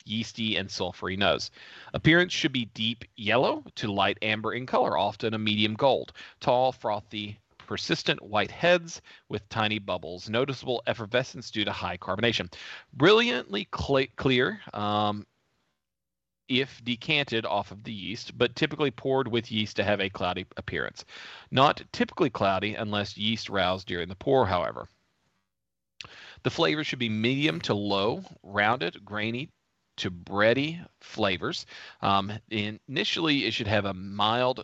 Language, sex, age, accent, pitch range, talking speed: English, male, 40-59, American, 105-125 Hz, 140 wpm